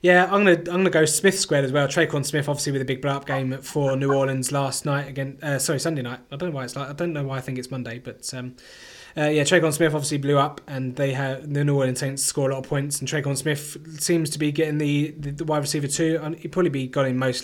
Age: 20-39